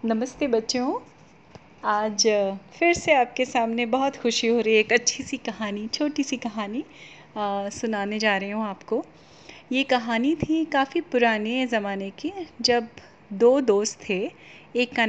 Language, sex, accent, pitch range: Hindi, female, native, 210-255 Hz